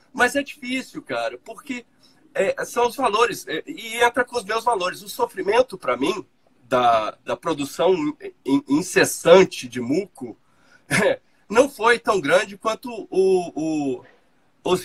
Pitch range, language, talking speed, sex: 180-280 Hz, Portuguese, 120 wpm, male